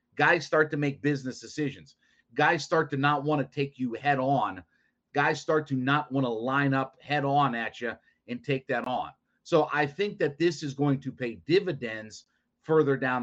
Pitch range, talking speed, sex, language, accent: 130-160 Hz, 200 wpm, male, English, American